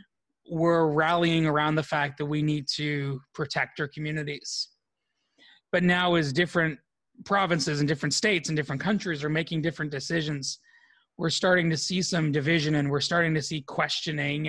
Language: English